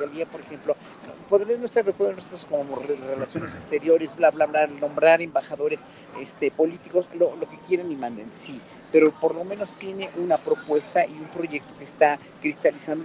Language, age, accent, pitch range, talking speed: Spanish, 40-59, Mexican, 155-200 Hz, 165 wpm